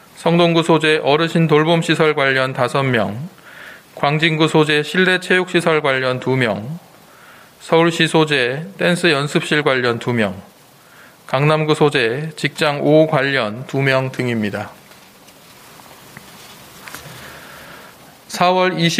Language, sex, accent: Korean, male, native